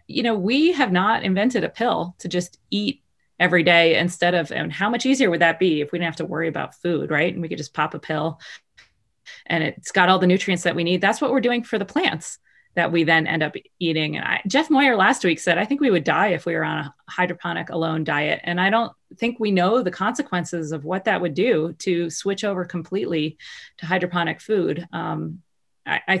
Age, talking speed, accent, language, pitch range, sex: 30-49, 235 wpm, American, English, 165-220 Hz, female